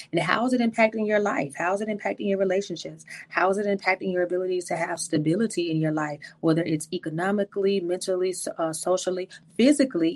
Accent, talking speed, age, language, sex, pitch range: American, 190 wpm, 30-49, English, female, 170-200 Hz